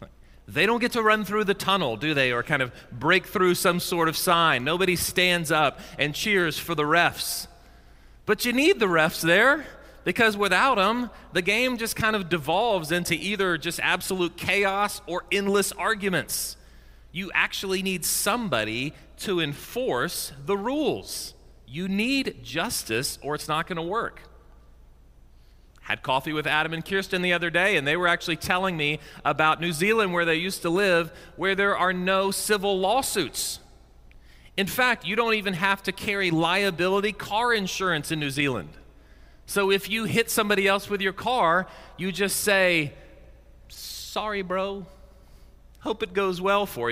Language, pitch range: English, 165-200 Hz